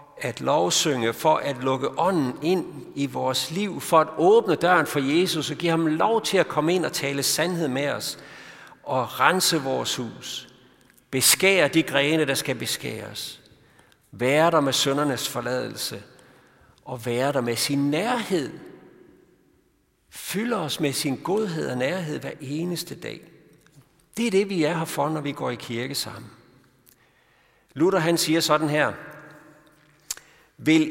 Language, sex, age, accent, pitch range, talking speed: Danish, male, 60-79, native, 135-170 Hz, 155 wpm